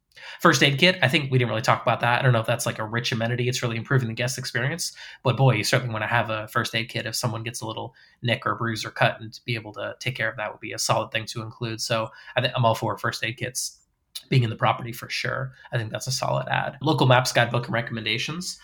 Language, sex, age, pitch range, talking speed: English, male, 20-39, 110-125 Hz, 280 wpm